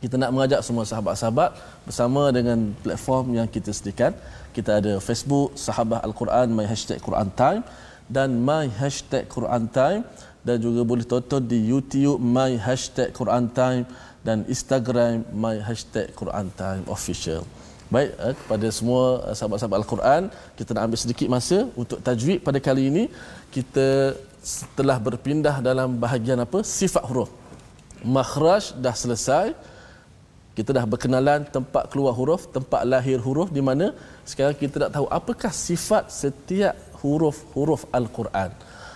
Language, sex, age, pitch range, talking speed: Malayalam, male, 20-39, 115-140 Hz, 135 wpm